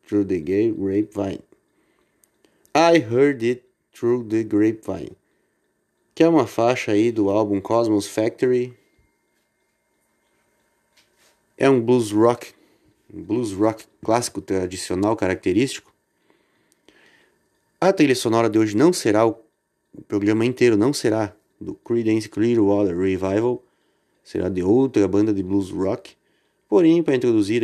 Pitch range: 100-125 Hz